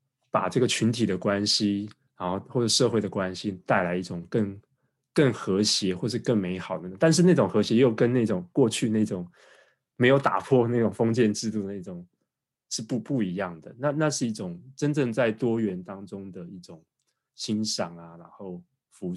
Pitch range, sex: 95-135 Hz, male